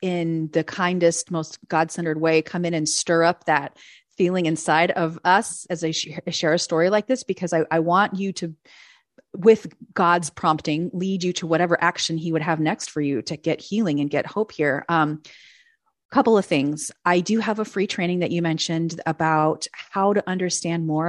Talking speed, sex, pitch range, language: 195 wpm, female, 160-190 Hz, English